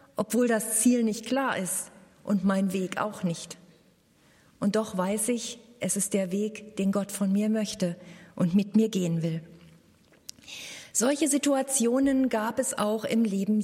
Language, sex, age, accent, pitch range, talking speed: German, female, 40-59, German, 195-255 Hz, 160 wpm